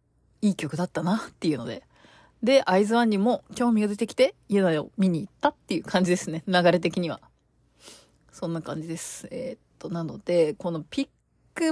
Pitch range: 165-235 Hz